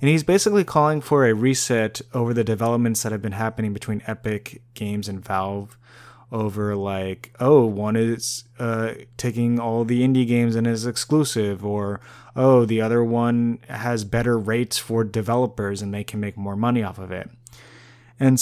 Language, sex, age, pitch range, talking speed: English, male, 20-39, 110-120 Hz, 175 wpm